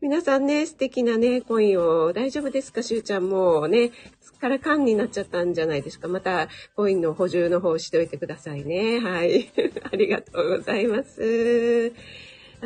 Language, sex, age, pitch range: Japanese, female, 40-59, 230-285 Hz